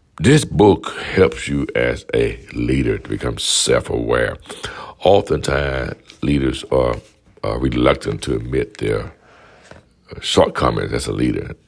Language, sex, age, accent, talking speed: English, male, 60-79, American, 120 wpm